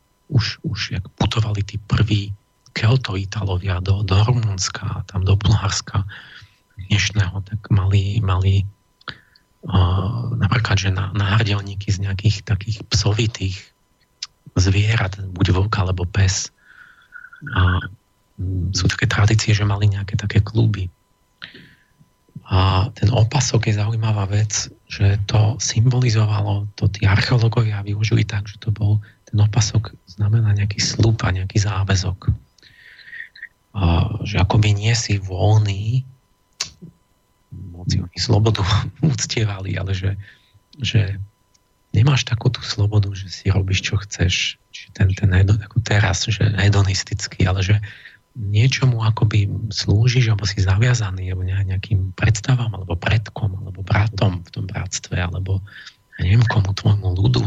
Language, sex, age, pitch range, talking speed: Slovak, male, 40-59, 95-110 Hz, 120 wpm